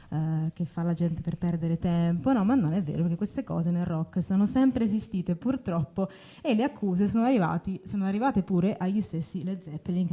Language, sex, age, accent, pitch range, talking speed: Italian, female, 20-39, native, 170-215 Hz, 200 wpm